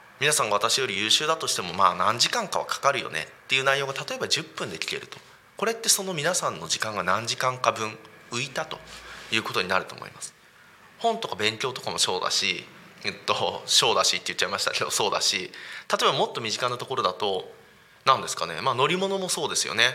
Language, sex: Japanese, male